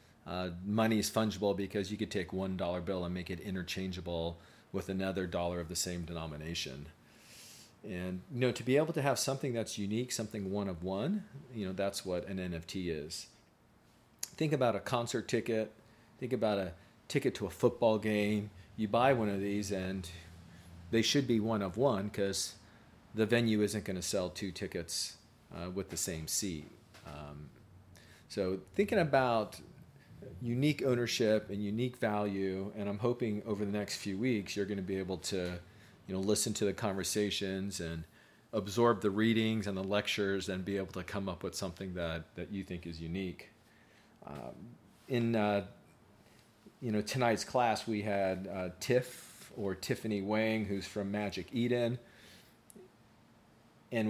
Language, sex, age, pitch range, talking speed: English, male, 40-59, 95-110 Hz, 170 wpm